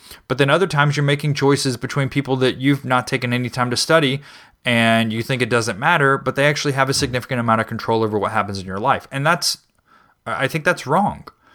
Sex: male